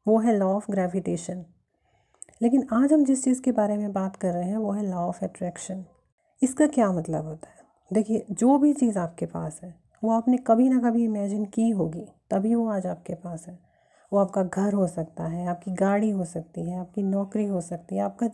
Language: Hindi